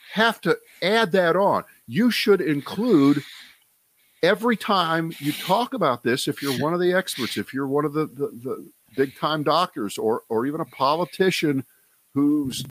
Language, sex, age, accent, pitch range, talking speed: English, male, 50-69, American, 120-165 Hz, 170 wpm